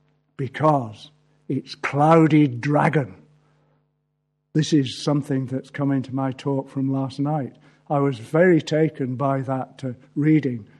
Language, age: English, 60-79